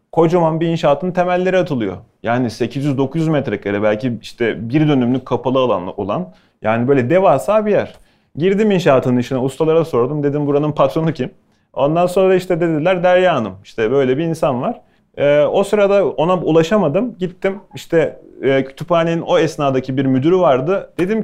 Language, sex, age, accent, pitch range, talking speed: Turkish, male, 30-49, native, 130-175 Hz, 155 wpm